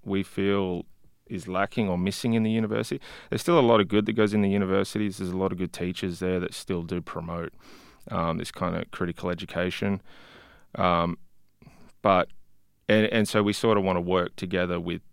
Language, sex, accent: English, male, Australian